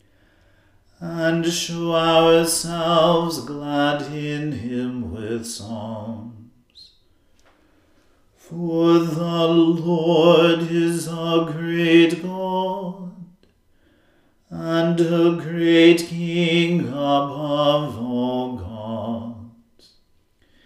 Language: English